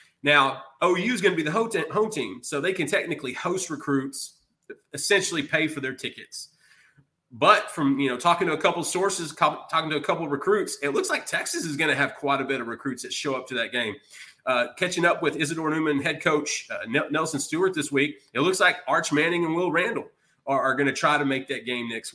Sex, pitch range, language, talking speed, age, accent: male, 135-175 Hz, English, 235 wpm, 30-49, American